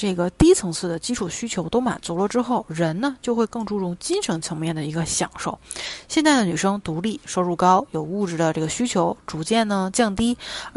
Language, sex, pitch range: Chinese, female, 175-240 Hz